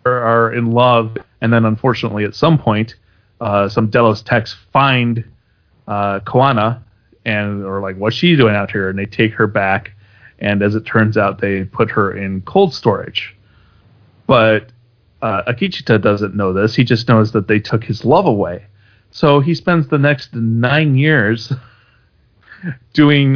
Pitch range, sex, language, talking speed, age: 105-125 Hz, male, English, 160 wpm, 30-49